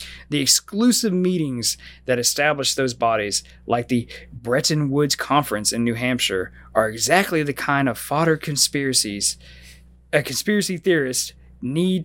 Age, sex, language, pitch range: 30-49, male, English, 110-170 Hz